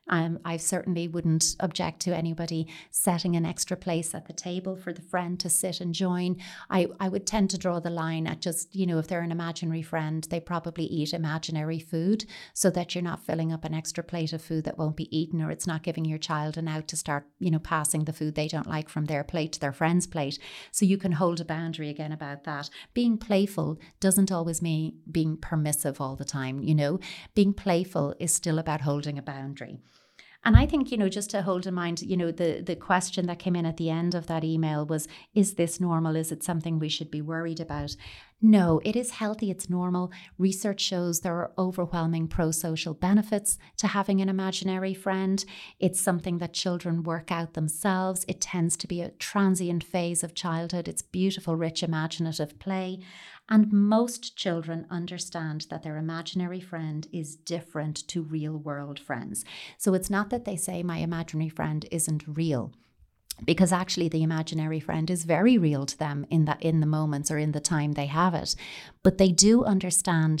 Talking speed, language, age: 205 wpm, English, 30-49